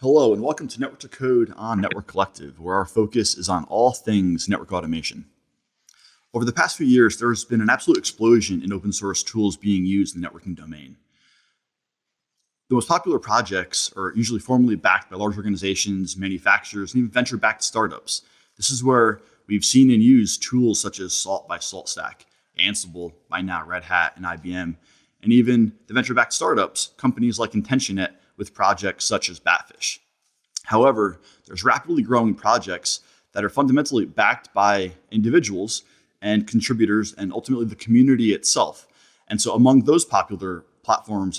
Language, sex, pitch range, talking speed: English, male, 95-115 Hz, 165 wpm